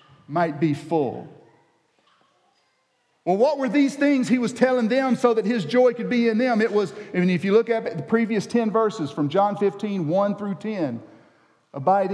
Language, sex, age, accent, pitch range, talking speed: English, male, 50-69, American, 165-230 Hz, 195 wpm